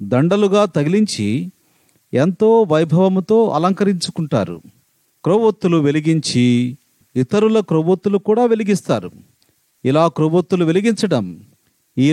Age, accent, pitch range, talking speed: 40-59, native, 145-190 Hz, 75 wpm